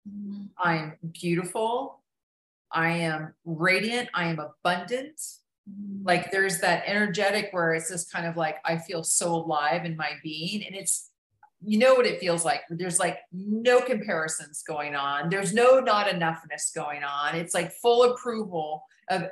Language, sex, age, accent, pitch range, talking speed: English, female, 40-59, American, 165-210 Hz, 155 wpm